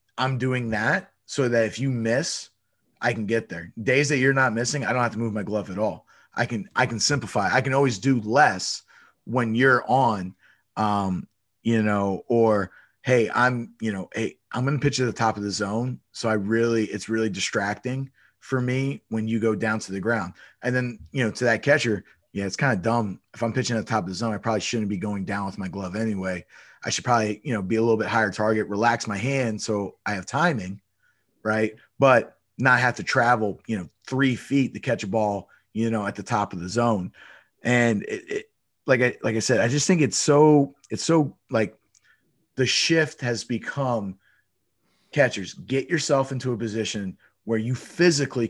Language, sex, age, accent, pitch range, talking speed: English, male, 30-49, American, 105-130 Hz, 215 wpm